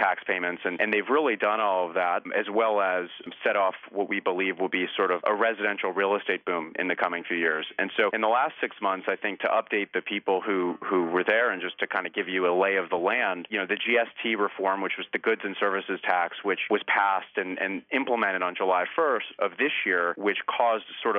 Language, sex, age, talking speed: English, male, 30-49, 250 wpm